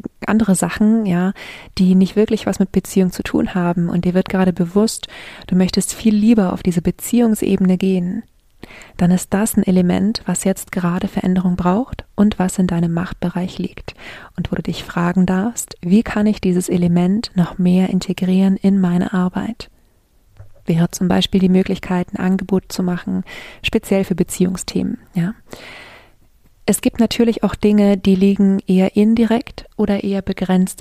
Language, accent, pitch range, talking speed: German, German, 180-200 Hz, 165 wpm